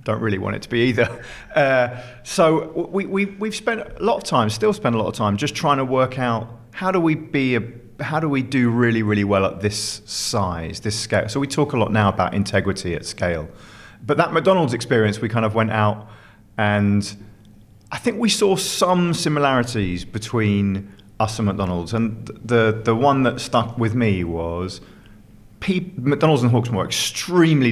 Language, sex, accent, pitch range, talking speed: English, male, British, 100-130 Hz, 195 wpm